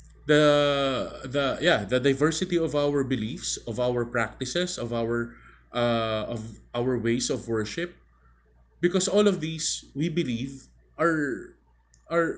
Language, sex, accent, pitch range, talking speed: English, male, Filipino, 110-155 Hz, 130 wpm